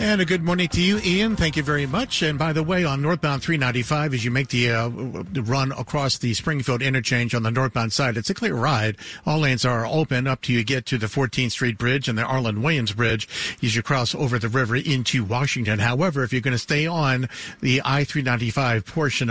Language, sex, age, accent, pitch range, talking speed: English, male, 50-69, American, 115-145 Hz, 225 wpm